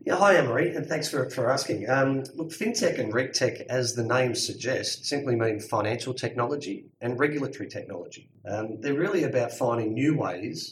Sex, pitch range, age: male, 100-130 Hz, 30-49